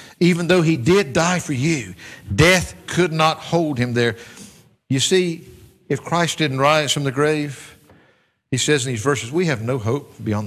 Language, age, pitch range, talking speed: English, 60-79, 125-180 Hz, 185 wpm